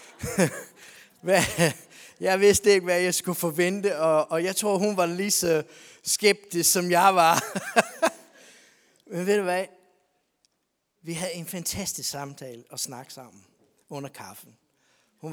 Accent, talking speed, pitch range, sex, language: native, 130 wpm, 145-185 Hz, male, Danish